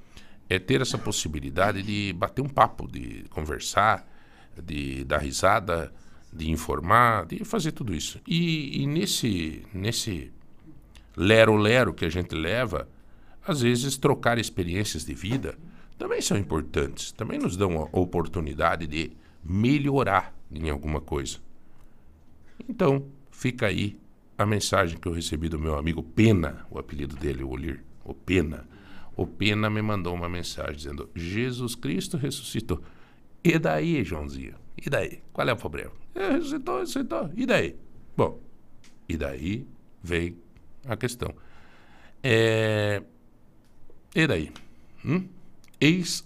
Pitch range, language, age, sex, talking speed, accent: 80-115 Hz, Portuguese, 60-79, male, 130 wpm, Brazilian